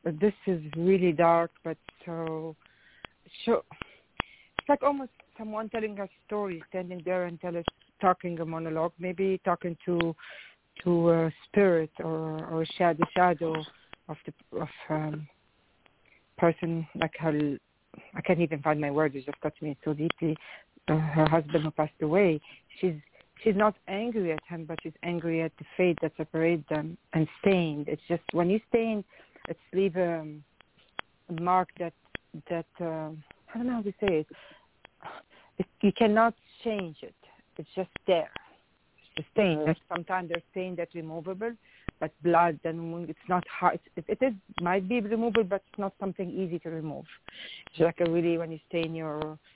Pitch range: 160-185 Hz